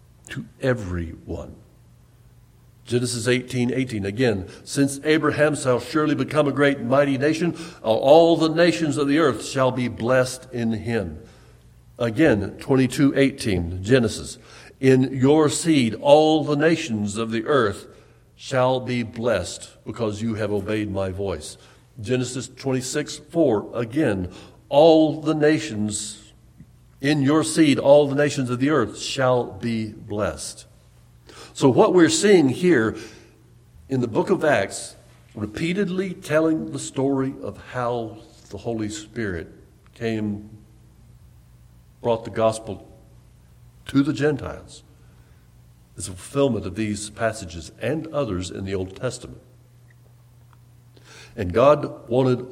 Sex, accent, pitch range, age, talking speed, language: male, American, 105-140 Hz, 60-79, 125 wpm, English